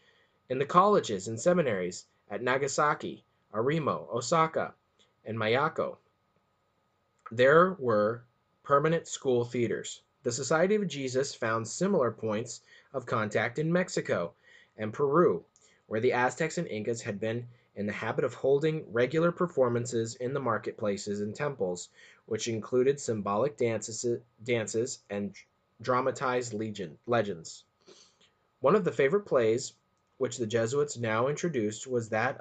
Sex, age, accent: male, 20-39, American